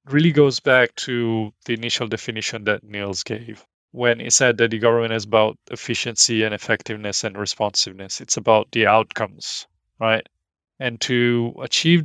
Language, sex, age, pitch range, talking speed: English, male, 30-49, 110-135 Hz, 155 wpm